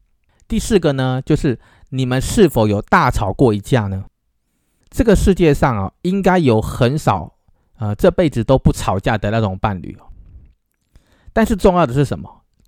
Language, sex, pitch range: Chinese, male, 115-160 Hz